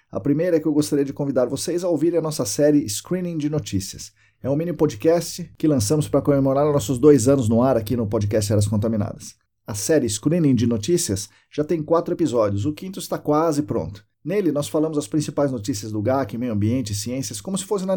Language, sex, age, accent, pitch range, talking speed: Portuguese, male, 50-69, Brazilian, 110-150 Hz, 215 wpm